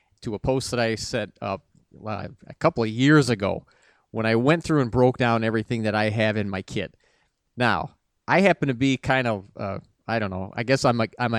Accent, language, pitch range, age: American, English, 110-135 Hz, 40-59